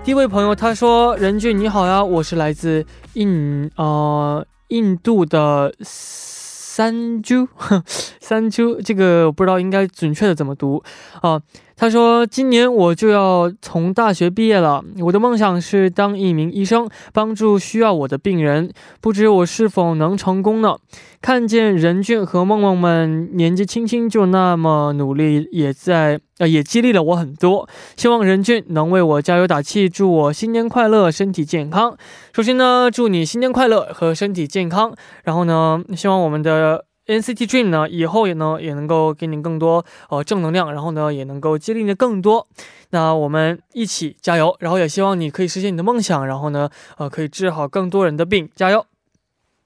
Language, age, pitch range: Korean, 20-39, 160-220 Hz